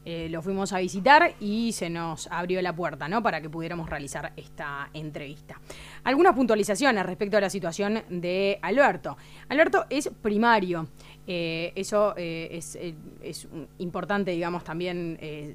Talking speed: 145 wpm